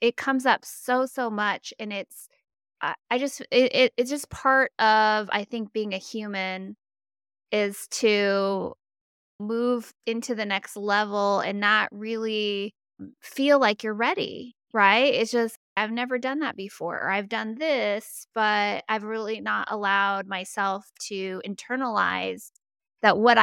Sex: female